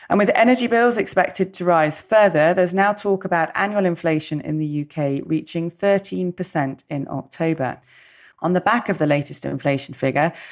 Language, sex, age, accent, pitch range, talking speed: English, female, 30-49, British, 155-200 Hz, 165 wpm